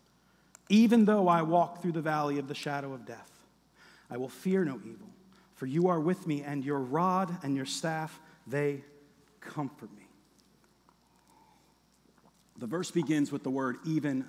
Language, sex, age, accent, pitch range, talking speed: English, male, 40-59, American, 150-200 Hz, 160 wpm